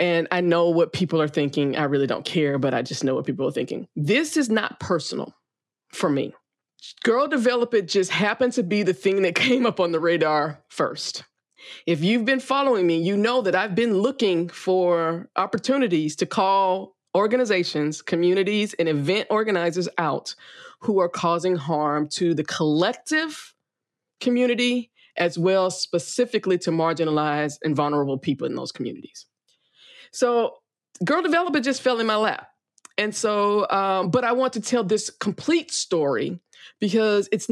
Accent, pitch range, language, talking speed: American, 165-215 Hz, English, 165 wpm